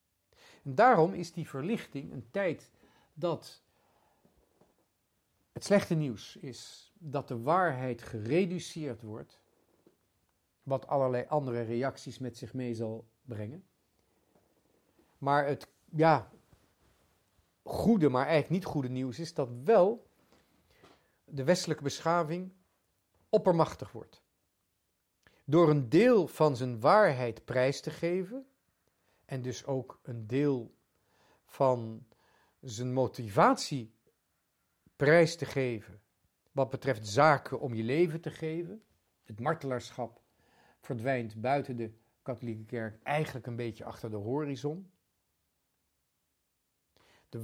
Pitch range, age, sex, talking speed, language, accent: 110-155 Hz, 50-69, male, 105 wpm, Dutch, Dutch